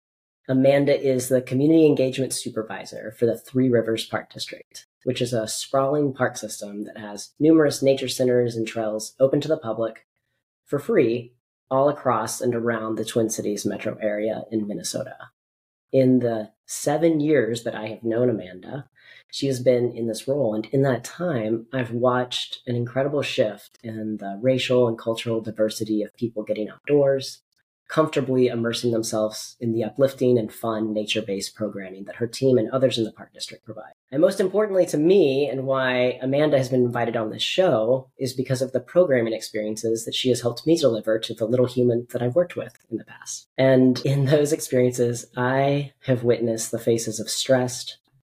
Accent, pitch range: American, 110-135 Hz